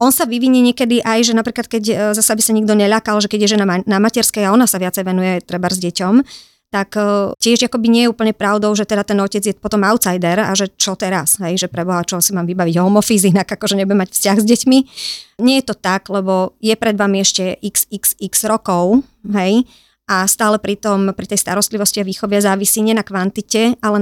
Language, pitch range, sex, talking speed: Slovak, 190-225 Hz, male, 210 wpm